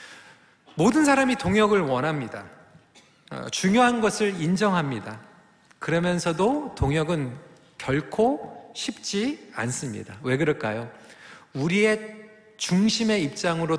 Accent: native